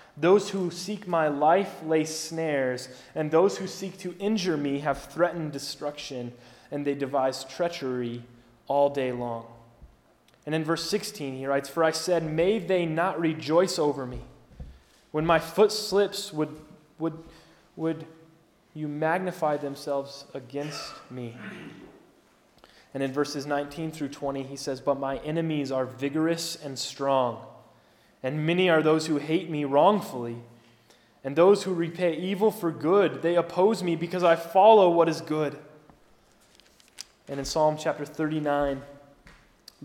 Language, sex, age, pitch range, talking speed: English, male, 20-39, 135-165 Hz, 145 wpm